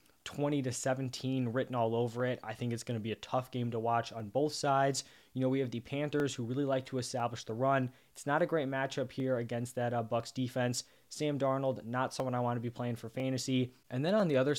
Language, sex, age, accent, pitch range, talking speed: English, male, 20-39, American, 115-135 Hz, 245 wpm